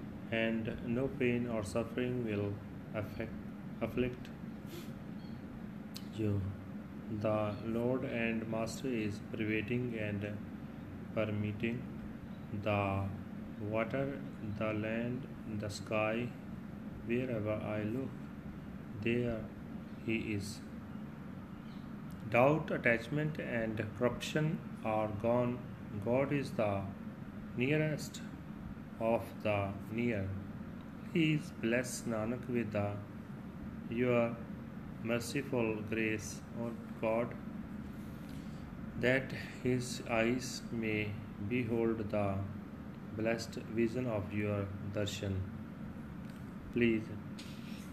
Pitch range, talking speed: 105-120 Hz, 80 wpm